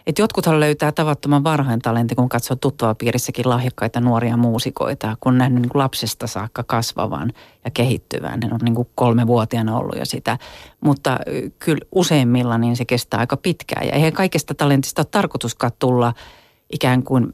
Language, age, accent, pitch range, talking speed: Finnish, 40-59, native, 120-145 Hz, 165 wpm